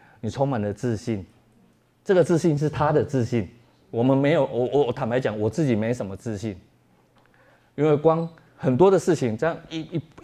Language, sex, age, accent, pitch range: Chinese, male, 30-49, native, 105-140 Hz